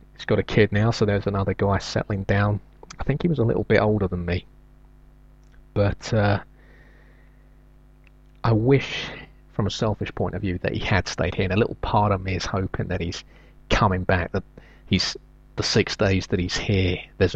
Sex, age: male, 30-49